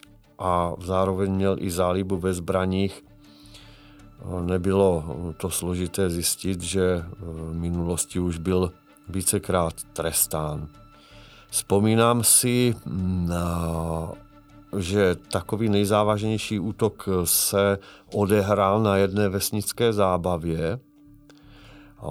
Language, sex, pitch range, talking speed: Czech, male, 90-110 Hz, 85 wpm